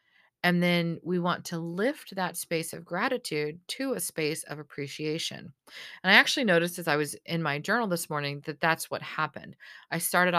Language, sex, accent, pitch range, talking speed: English, female, American, 160-200 Hz, 190 wpm